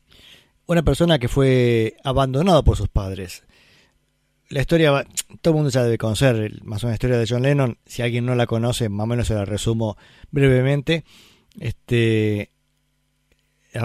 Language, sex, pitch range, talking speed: Spanish, male, 115-150 Hz, 155 wpm